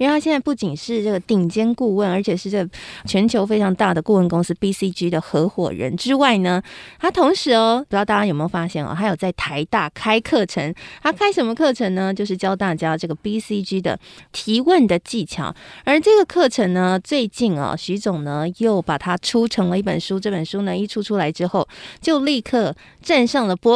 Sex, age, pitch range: female, 20-39, 185-250 Hz